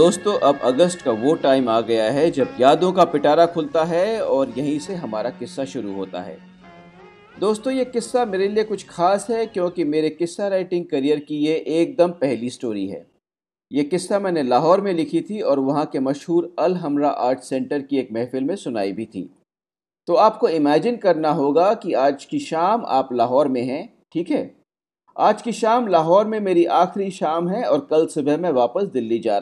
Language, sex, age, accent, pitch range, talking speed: Hindi, male, 40-59, native, 140-195 Hz, 195 wpm